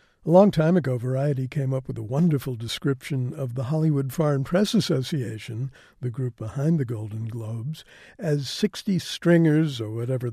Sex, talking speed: male, 165 wpm